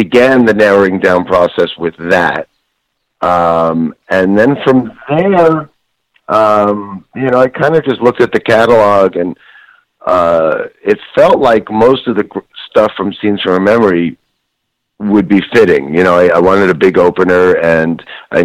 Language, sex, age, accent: English, male, 50-69, American